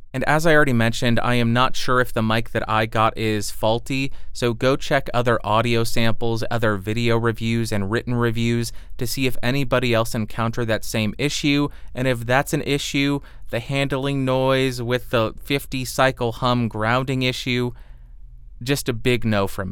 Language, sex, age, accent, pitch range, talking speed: English, male, 30-49, American, 115-140 Hz, 175 wpm